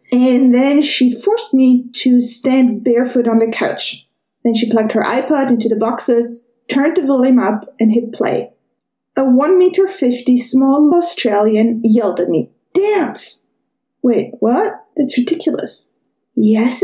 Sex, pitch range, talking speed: female, 230-280 Hz, 145 wpm